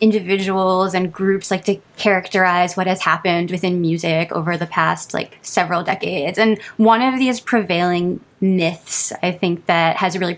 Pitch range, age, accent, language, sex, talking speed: 170-195 Hz, 20-39, American, English, female, 160 wpm